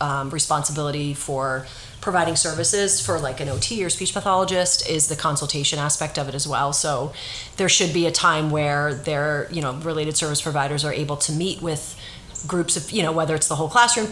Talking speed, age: 200 wpm, 30-49